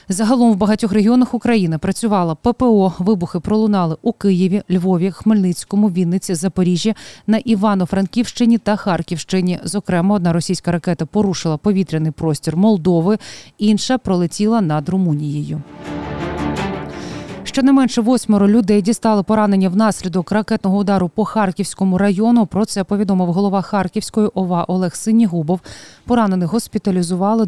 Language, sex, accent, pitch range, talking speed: Ukrainian, female, native, 180-215 Hz, 115 wpm